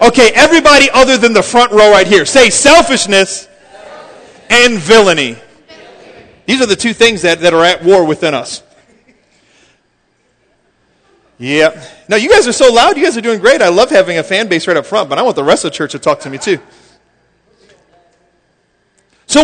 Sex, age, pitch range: male, 40-59, 195-270 Hz